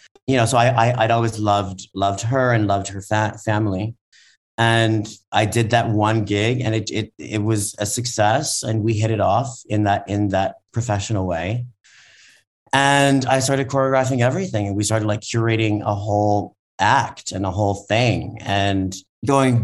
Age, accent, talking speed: 30-49, American, 175 wpm